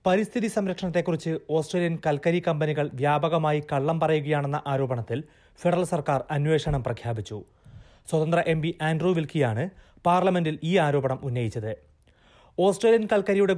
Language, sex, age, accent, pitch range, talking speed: Malayalam, male, 30-49, native, 135-175 Hz, 100 wpm